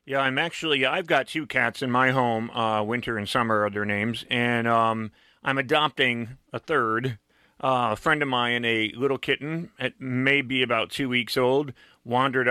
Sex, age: male, 40-59